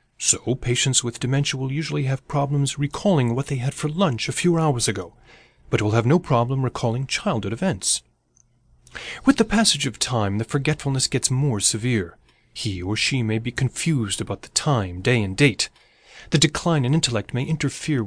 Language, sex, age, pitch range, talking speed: English, male, 30-49, 115-155 Hz, 180 wpm